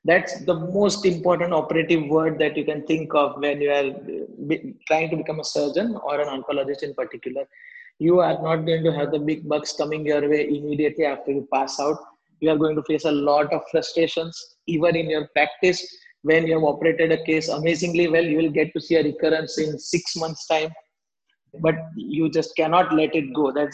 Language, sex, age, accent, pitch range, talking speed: English, male, 20-39, Indian, 150-175 Hz, 205 wpm